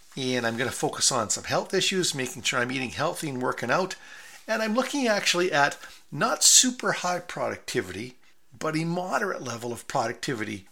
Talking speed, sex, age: 180 wpm, male, 50-69